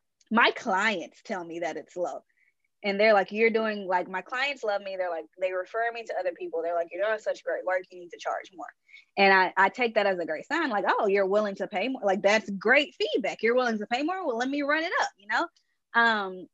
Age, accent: 20-39, American